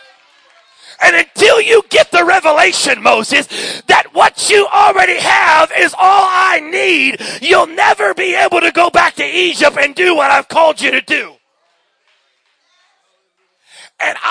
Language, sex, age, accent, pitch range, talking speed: English, male, 40-59, American, 255-310 Hz, 145 wpm